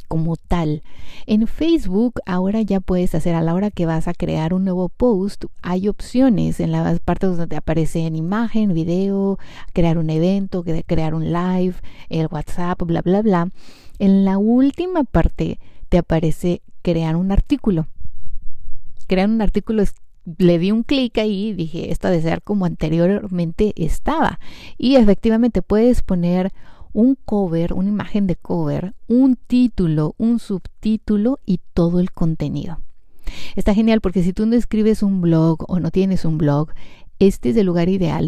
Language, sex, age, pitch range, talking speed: Spanish, female, 30-49, 165-205 Hz, 160 wpm